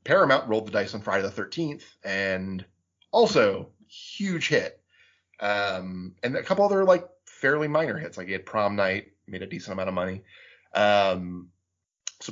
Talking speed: 165 wpm